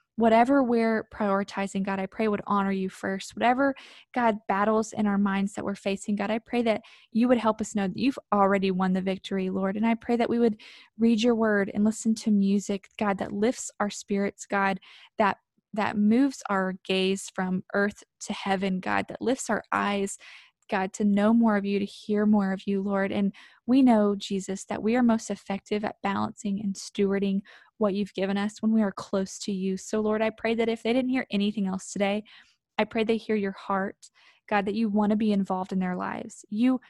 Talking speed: 215 wpm